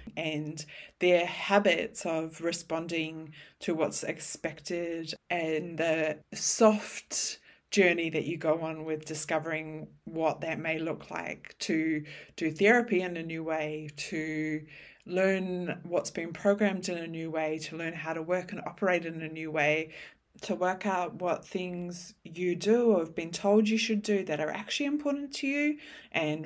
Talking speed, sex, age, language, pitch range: 160 wpm, female, 20-39, English, 155-185 Hz